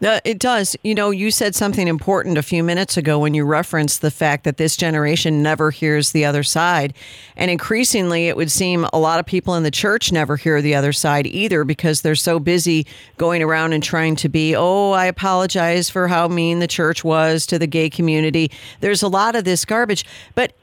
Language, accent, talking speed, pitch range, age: English, American, 215 wpm, 160-205 Hz, 50-69